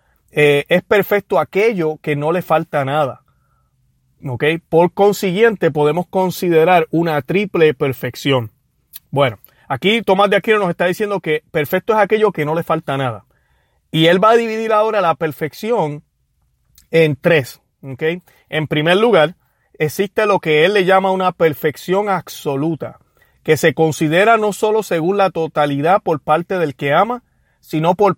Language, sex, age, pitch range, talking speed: Spanish, male, 30-49, 145-185 Hz, 150 wpm